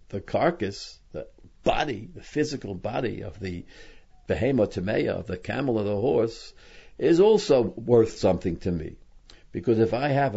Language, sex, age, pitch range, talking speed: English, male, 60-79, 95-125 Hz, 145 wpm